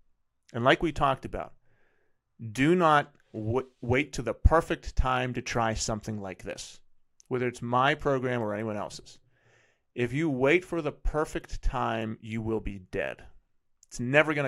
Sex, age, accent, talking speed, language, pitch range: male, 30-49, American, 155 wpm, English, 110-135 Hz